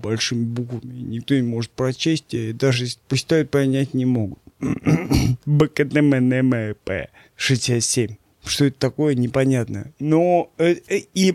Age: 20-39